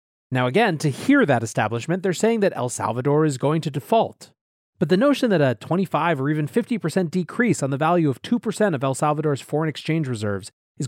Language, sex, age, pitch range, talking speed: English, male, 30-49, 125-165 Hz, 205 wpm